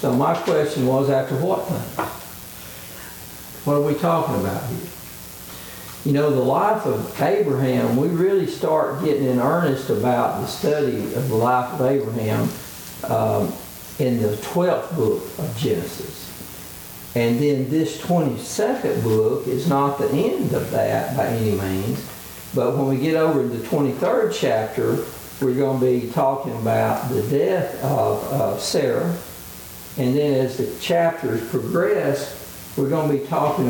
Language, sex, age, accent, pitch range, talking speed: English, male, 60-79, American, 110-150 Hz, 150 wpm